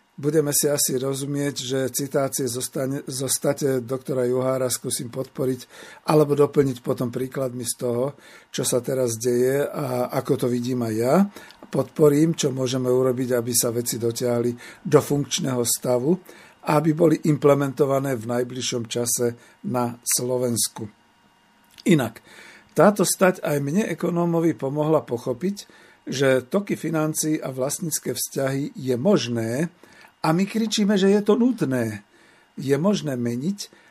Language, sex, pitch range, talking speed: Slovak, male, 125-155 Hz, 130 wpm